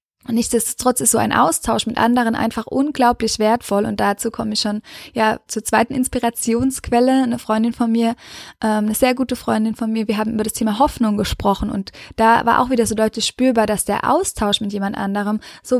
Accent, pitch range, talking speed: German, 210-240 Hz, 200 wpm